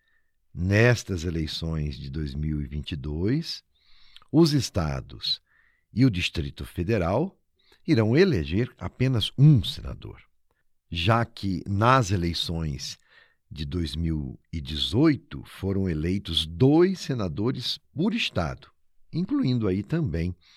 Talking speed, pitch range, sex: 90 wpm, 80-130 Hz, male